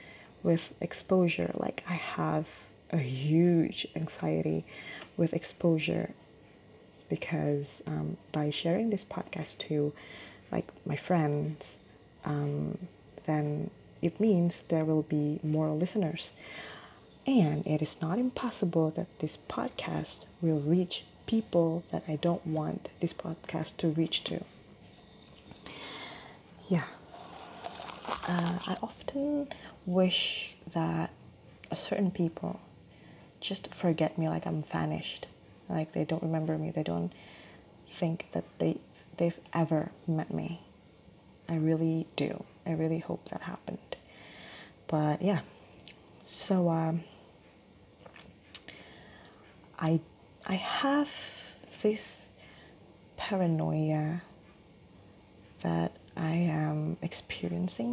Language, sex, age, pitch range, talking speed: Indonesian, female, 20-39, 145-175 Hz, 105 wpm